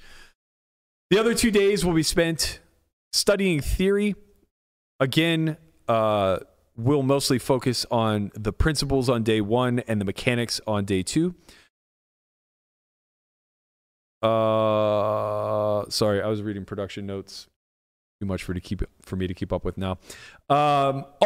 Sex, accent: male, American